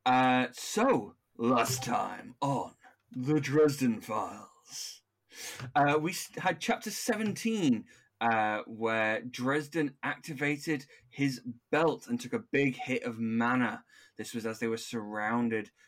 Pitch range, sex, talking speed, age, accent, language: 115-145 Hz, male, 120 wpm, 20-39, British, English